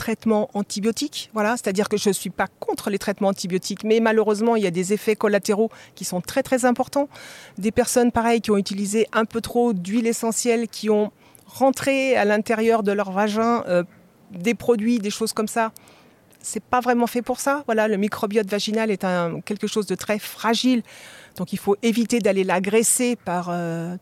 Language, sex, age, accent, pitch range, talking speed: French, female, 40-59, French, 190-230 Hz, 195 wpm